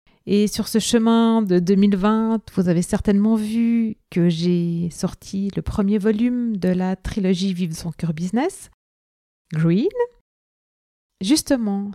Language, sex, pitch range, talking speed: French, female, 185-235 Hz, 135 wpm